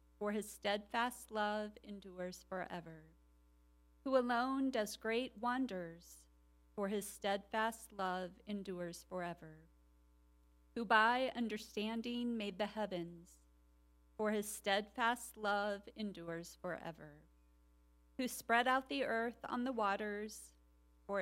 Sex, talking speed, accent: female, 105 wpm, American